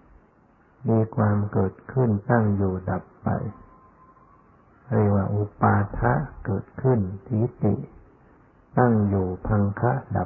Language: Thai